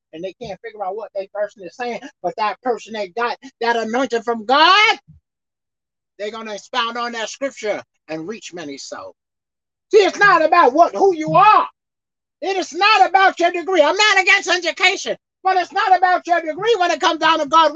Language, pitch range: English, 240-350 Hz